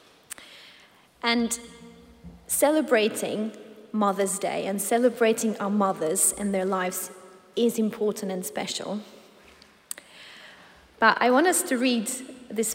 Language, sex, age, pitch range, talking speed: English, female, 30-49, 190-235 Hz, 105 wpm